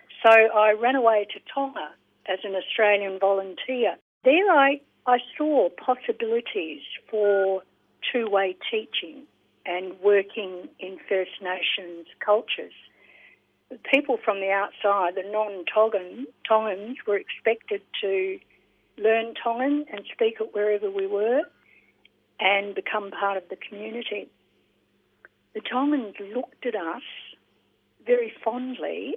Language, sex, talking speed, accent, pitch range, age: English, female, 115 wpm, Australian, 195-255 Hz, 50-69